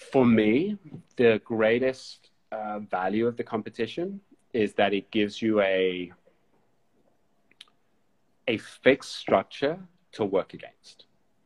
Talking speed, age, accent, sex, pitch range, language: 110 wpm, 30-49, British, male, 95-115 Hz, English